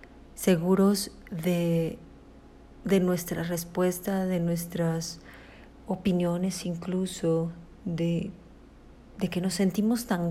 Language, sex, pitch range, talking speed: Spanish, female, 170-200 Hz, 85 wpm